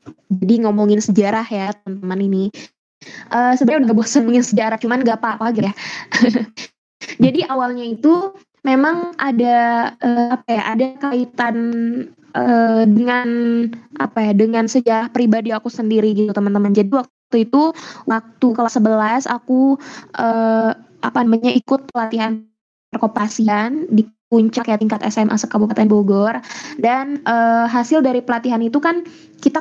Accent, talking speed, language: native, 140 wpm, Indonesian